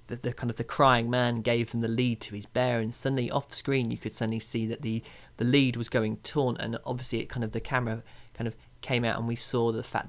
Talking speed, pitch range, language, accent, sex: 270 wpm, 115-130 Hz, English, British, male